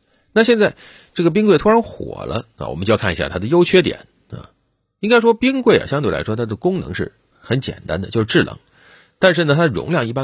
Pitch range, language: 100-160 Hz, Chinese